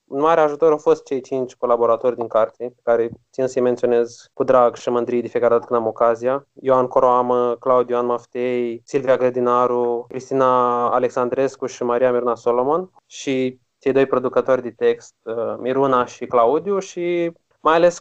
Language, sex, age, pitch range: Romanian, male, 20-39, 120-135 Hz